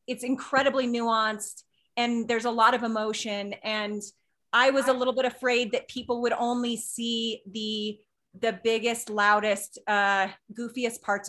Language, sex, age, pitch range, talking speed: English, female, 30-49, 210-240 Hz, 150 wpm